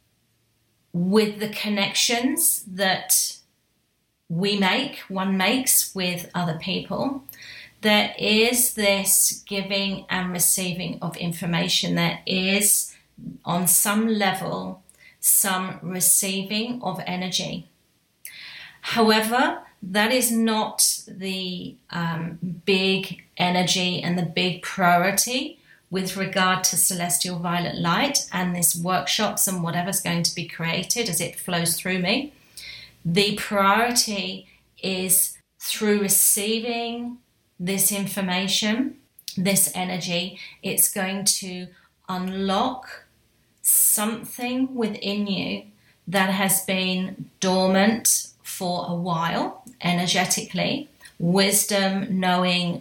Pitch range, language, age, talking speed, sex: 180-210 Hz, English, 30-49, 100 wpm, female